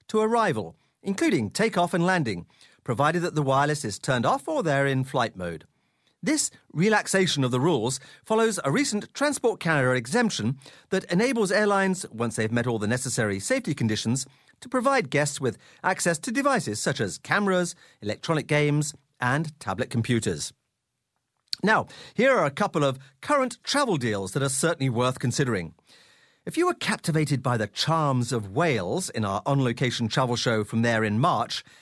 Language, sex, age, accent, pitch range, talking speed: English, male, 40-59, British, 125-195 Hz, 165 wpm